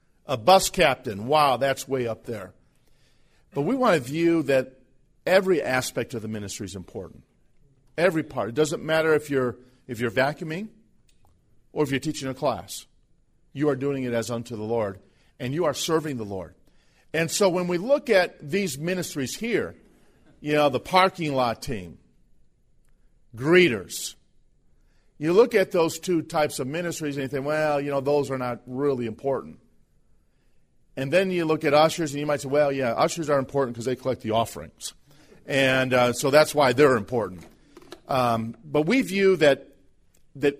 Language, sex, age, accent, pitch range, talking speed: English, male, 50-69, American, 125-160 Hz, 175 wpm